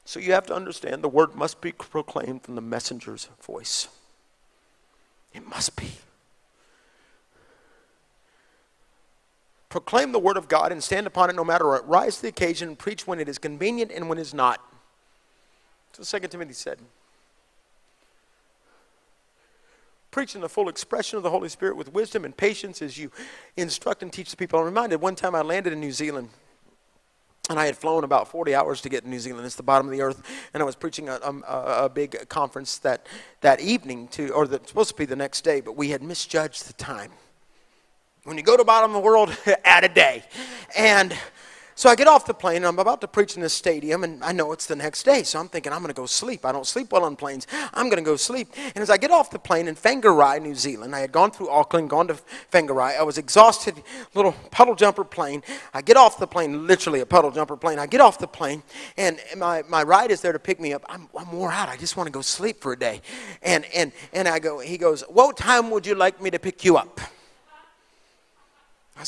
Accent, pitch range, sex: American, 150-215 Hz, male